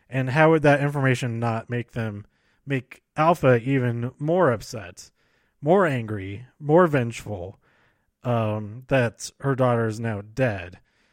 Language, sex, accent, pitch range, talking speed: English, male, American, 115-145 Hz, 130 wpm